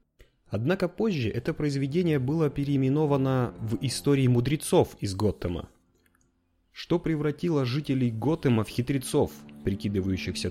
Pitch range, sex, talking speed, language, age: 95-135 Hz, male, 105 wpm, Russian, 30-49